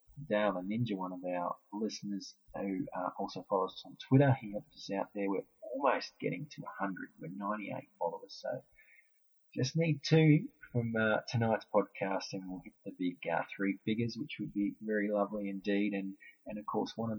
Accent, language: Australian, English